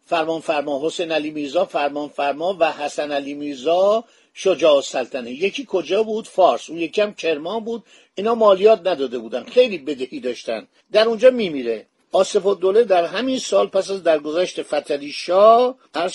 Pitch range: 165-220 Hz